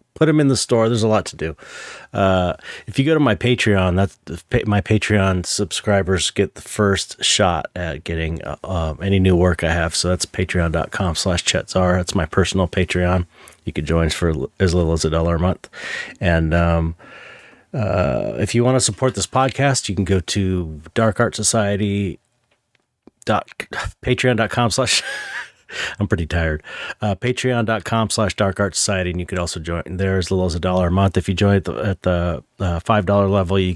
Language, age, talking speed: English, 30-49, 180 wpm